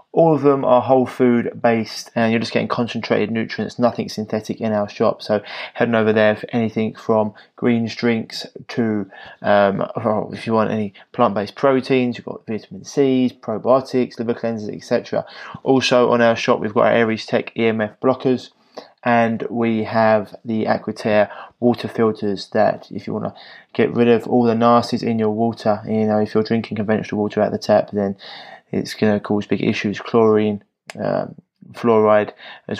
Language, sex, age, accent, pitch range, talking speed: English, male, 20-39, British, 110-120 Hz, 180 wpm